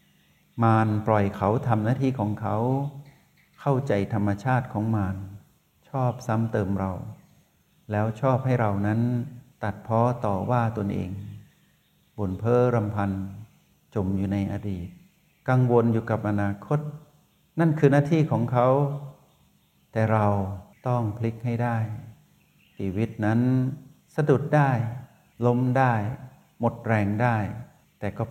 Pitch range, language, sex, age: 105-125 Hz, Thai, male, 60-79